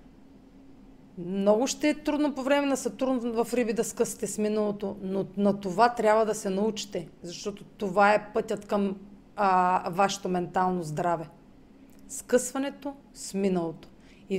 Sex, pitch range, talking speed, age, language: female, 195-245 Hz, 140 wpm, 40-59, Bulgarian